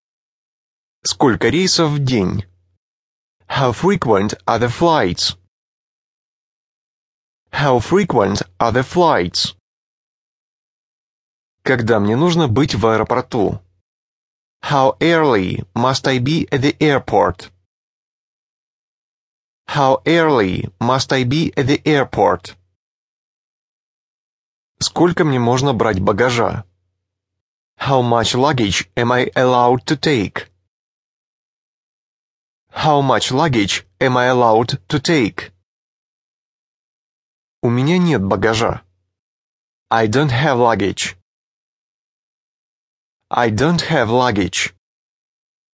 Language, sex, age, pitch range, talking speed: English, male, 30-49, 100-140 Hz, 90 wpm